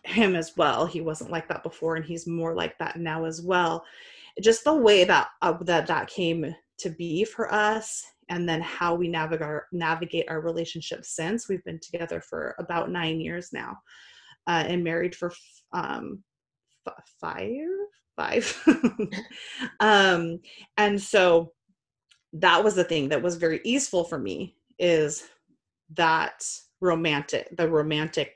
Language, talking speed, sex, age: English, 155 wpm, female, 30-49